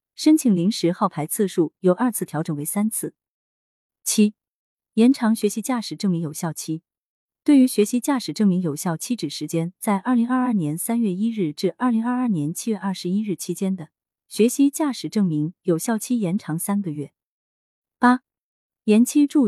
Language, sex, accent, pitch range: Chinese, female, native, 170-235 Hz